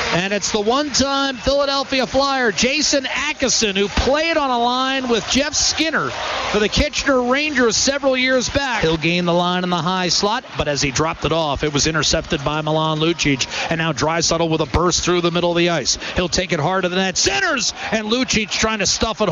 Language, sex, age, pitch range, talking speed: English, male, 40-59, 175-275 Hz, 215 wpm